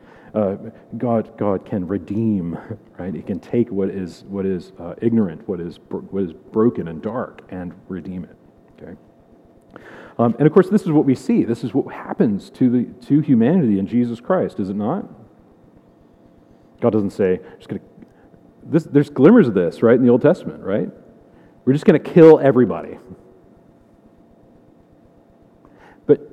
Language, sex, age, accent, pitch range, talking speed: English, male, 40-59, American, 95-135 Hz, 155 wpm